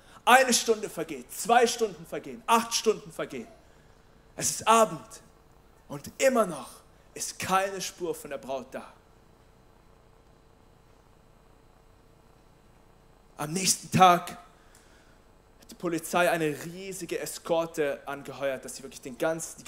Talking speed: 110 wpm